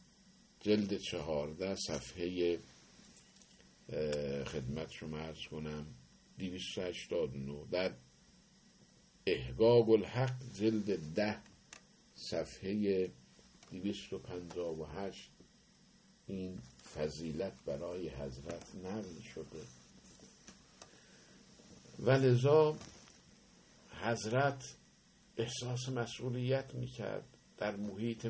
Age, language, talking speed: 50-69, Persian, 60 wpm